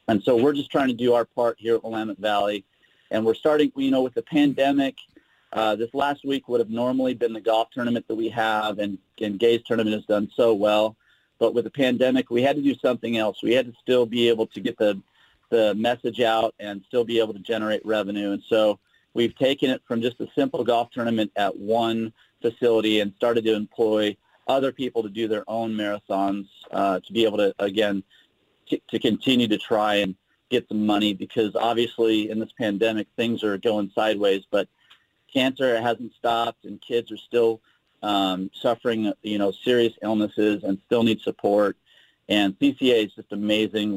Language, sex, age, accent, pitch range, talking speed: English, male, 40-59, American, 105-120 Hz, 195 wpm